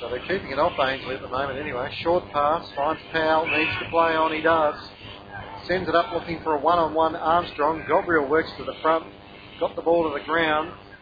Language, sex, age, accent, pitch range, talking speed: English, male, 40-59, Australian, 125-165 Hz, 210 wpm